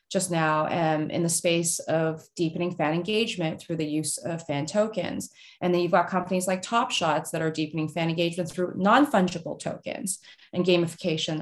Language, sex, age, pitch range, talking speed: English, female, 20-39, 170-195 Hz, 180 wpm